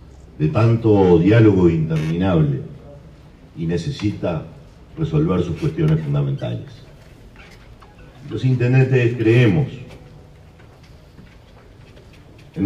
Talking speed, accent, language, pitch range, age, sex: 65 wpm, Argentinian, English, 100-140 Hz, 50-69, male